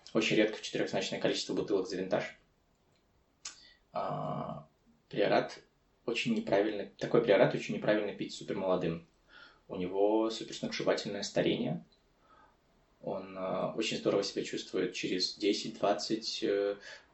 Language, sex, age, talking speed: Russian, male, 20-39, 110 wpm